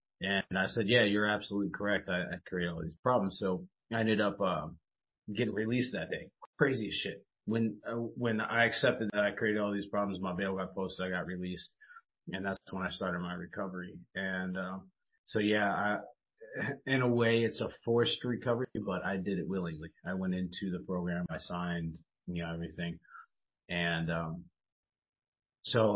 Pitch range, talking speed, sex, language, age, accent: 90-105 Hz, 185 wpm, male, English, 30-49, American